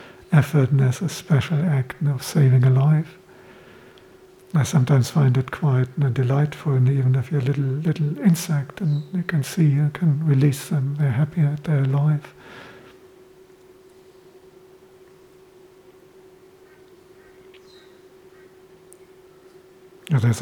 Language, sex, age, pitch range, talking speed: English, male, 60-79, 130-185 Hz, 110 wpm